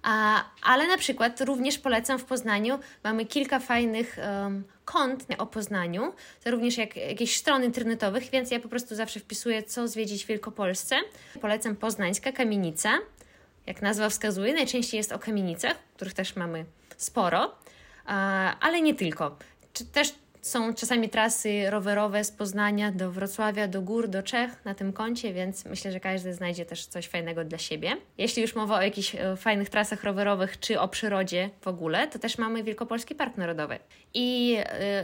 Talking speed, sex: 170 wpm, female